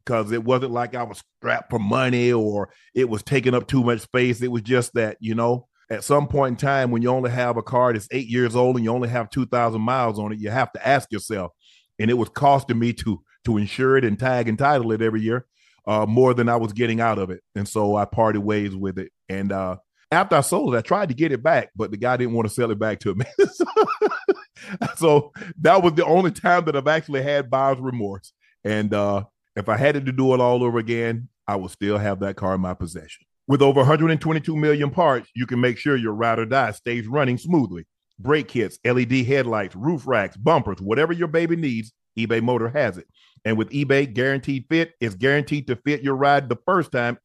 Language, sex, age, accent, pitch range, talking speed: English, male, 40-59, American, 110-140 Hz, 235 wpm